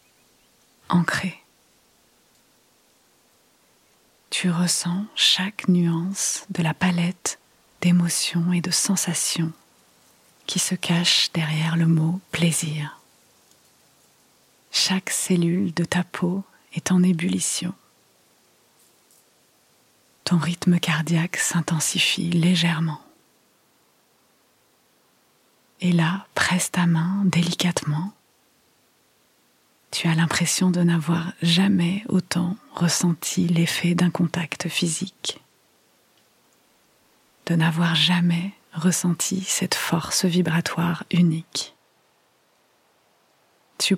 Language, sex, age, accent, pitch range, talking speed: French, female, 30-49, French, 170-185 Hz, 80 wpm